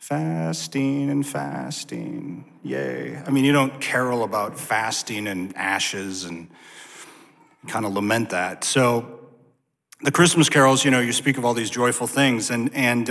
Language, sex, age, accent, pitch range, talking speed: English, male, 40-59, American, 120-155 Hz, 150 wpm